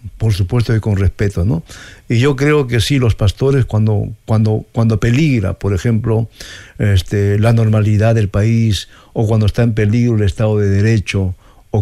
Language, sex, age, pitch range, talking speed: Spanish, male, 60-79, 105-125 Hz, 175 wpm